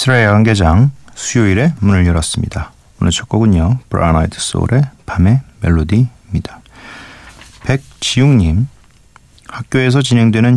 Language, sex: Korean, male